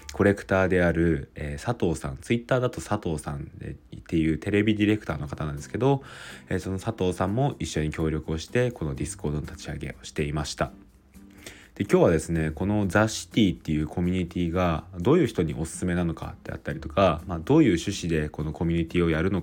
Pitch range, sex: 80-105 Hz, male